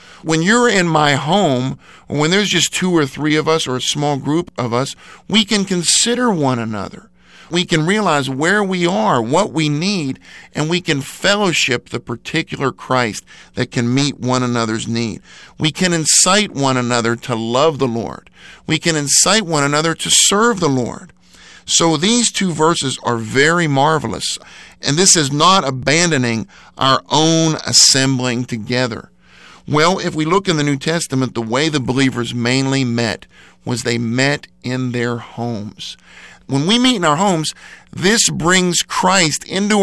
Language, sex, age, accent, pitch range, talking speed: English, male, 50-69, American, 130-170 Hz, 165 wpm